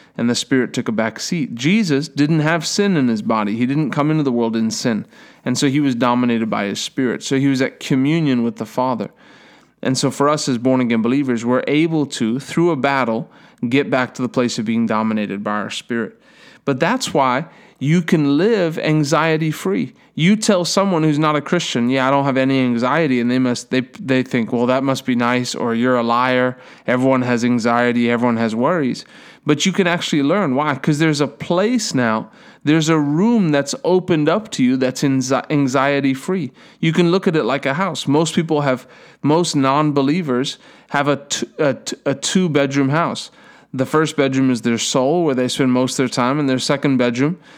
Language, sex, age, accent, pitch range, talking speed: English, male, 30-49, American, 125-160 Hz, 205 wpm